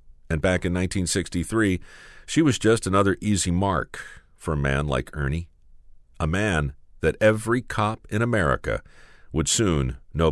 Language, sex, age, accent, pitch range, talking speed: English, male, 50-69, American, 75-110 Hz, 145 wpm